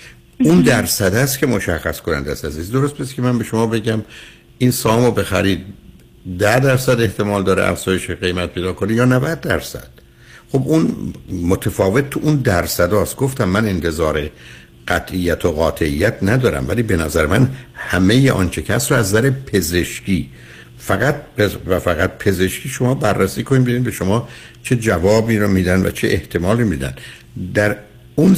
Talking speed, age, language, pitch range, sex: 155 wpm, 60-79, Persian, 90-120 Hz, male